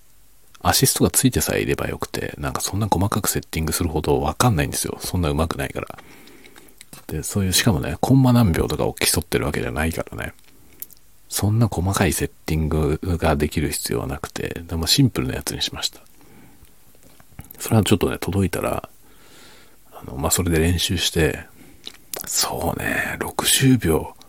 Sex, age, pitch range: male, 50-69, 80-110 Hz